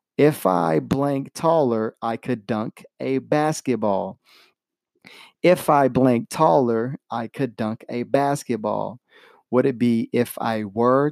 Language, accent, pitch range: English, American, 115-145 Hz